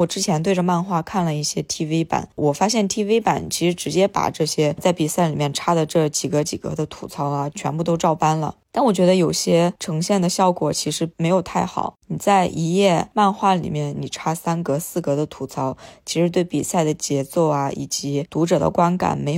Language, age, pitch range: Chinese, 20-39, 150-180 Hz